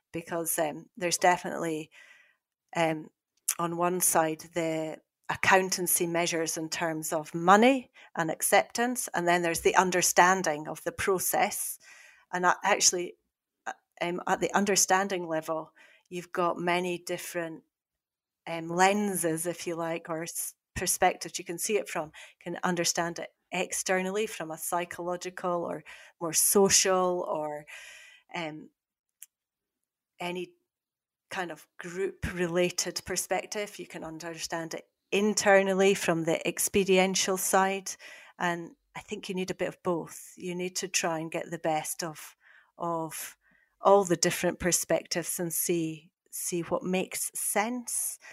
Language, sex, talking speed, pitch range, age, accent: English, female, 130 wpm, 170-195 Hz, 40-59, British